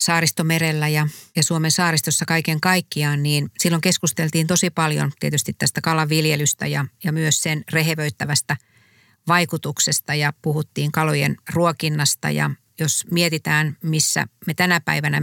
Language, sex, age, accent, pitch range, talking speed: Finnish, female, 50-69, native, 145-165 Hz, 120 wpm